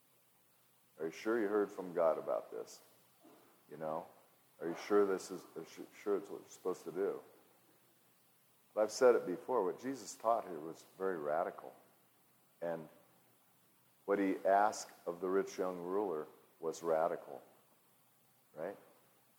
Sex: male